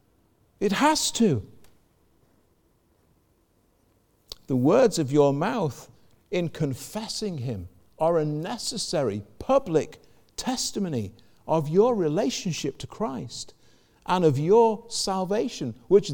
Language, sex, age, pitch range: English, male, 50-69, 125-200 Hz